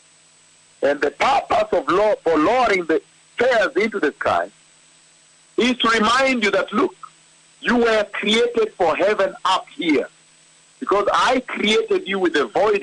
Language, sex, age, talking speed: English, male, 60-79, 140 wpm